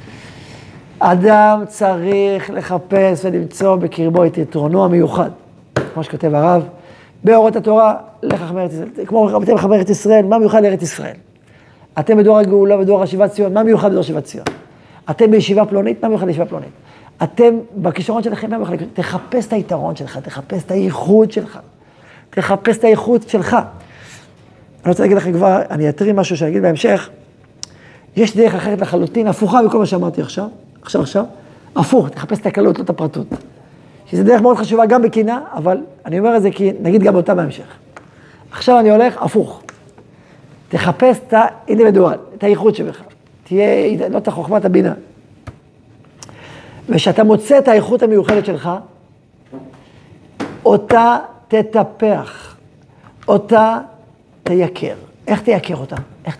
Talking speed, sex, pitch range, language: 125 wpm, male, 160-215 Hz, Hebrew